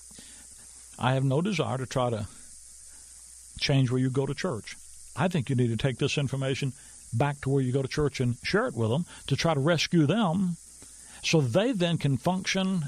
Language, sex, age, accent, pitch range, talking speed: English, male, 60-79, American, 105-160 Hz, 200 wpm